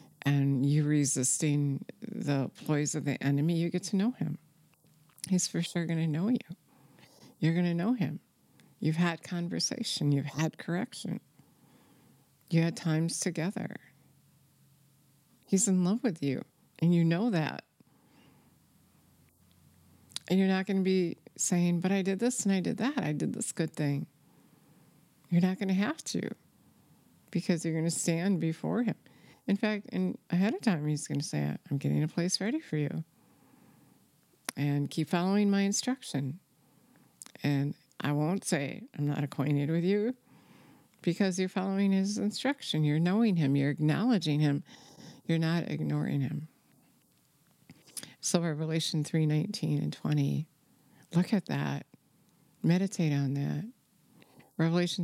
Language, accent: English, American